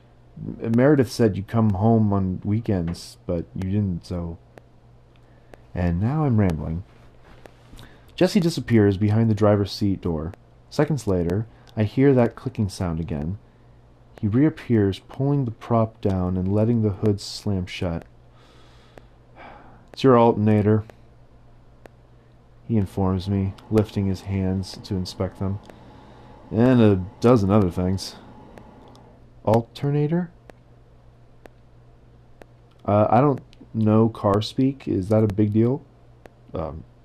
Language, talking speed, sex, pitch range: English, 115 wpm, male, 95-120 Hz